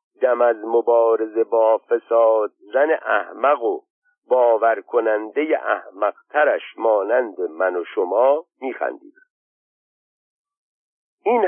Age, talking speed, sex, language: 50-69, 85 wpm, male, Persian